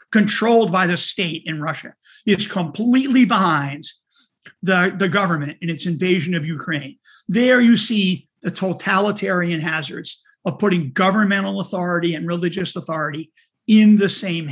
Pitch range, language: 175-230 Hz, English